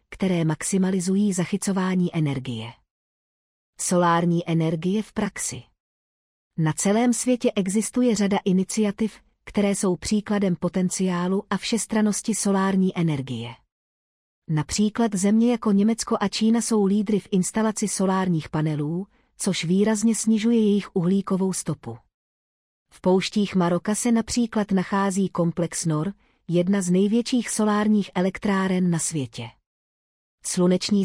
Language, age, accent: Czech, 40-59, native